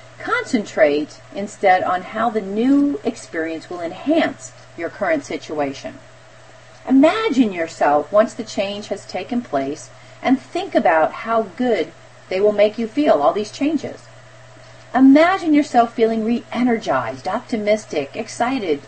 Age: 40-59